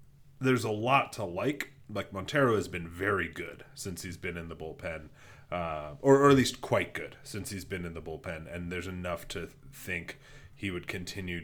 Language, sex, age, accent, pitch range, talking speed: English, male, 30-49, American, 85-130 Hz, 200 wpm